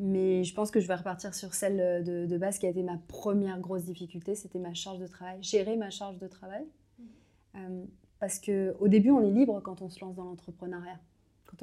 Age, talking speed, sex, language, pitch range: 30-49, 220 wpm, female, French, 180-215 Hz